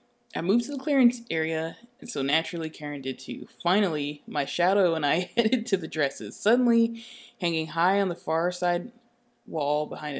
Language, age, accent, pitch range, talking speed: English, 20-39, American, 160-235 Hz, 175 wpm